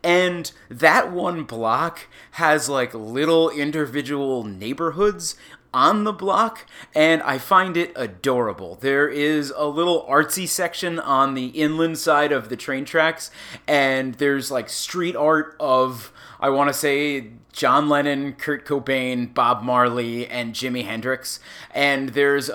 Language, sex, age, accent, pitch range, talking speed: English, male, 30-49, American, 120-160 Hz, 140 wpm